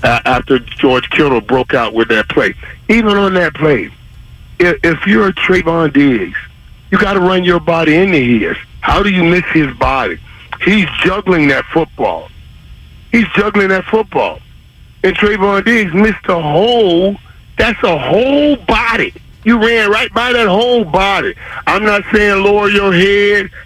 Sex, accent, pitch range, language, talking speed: male, American, 145-200 Hz, English, 160 wpm